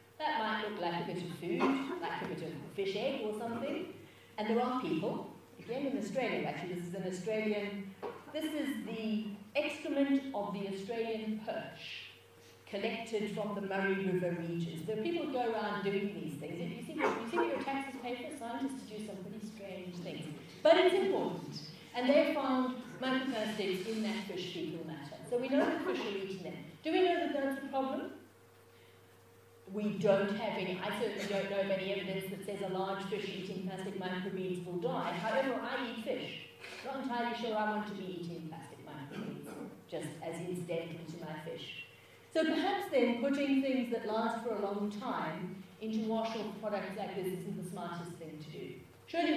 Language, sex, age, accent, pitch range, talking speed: English, female, 40-59, British, 185-240 Hz, 190 wpm